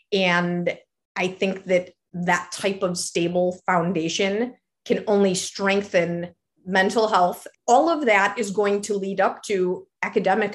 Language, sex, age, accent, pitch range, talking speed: English, female, 30-49, American, 180-215 Hz, 135 wpm